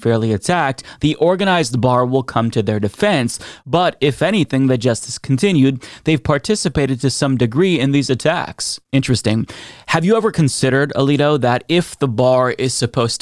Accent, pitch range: American, 120-145 Hz